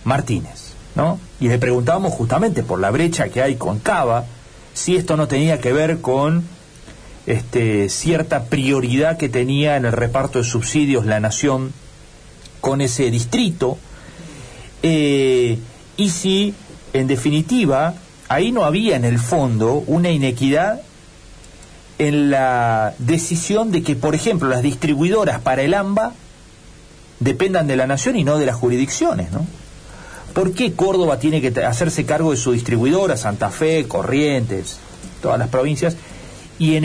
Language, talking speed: Spanish, 140 wpm